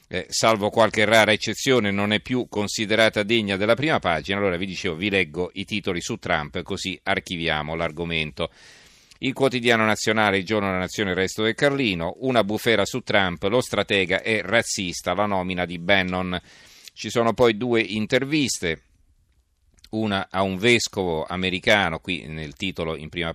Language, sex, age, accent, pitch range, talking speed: Italian, male, 40-59, native, 85-110 Hz, 160 wpm